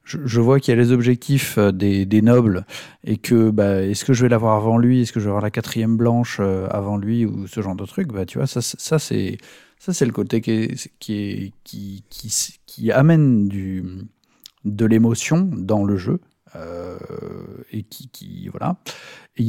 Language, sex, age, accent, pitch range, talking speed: French, male, 40-59, French, 105-130 Hz, 205 wpm